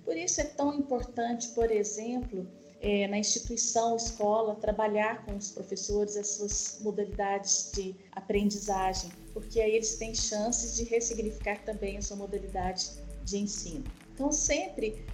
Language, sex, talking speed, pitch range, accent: Portuguese, female, 140 wpm, 195-230 Hz, Brazilian